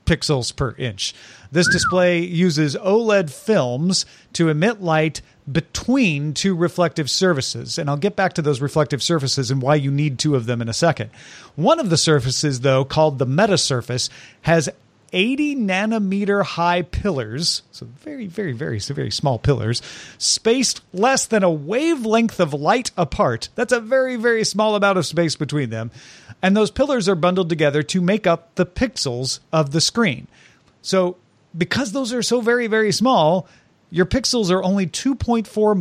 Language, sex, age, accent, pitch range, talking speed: English, male, 40-59, American, 145-200 Hz, 165 wpm